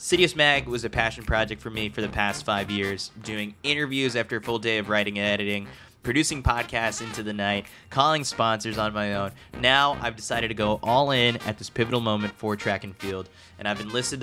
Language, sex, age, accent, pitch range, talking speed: English, male, 20-39, American, 105-130 Hz, 215 wpm